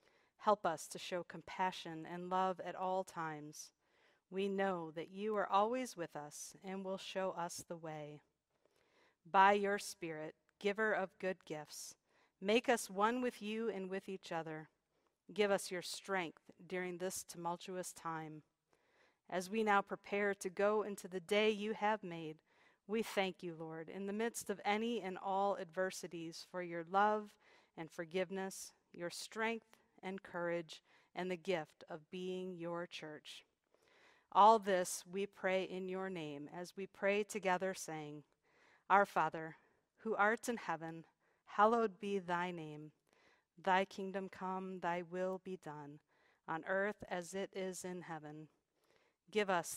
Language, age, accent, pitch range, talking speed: English, 40-59, American, 170-200 Hz, 155 wpm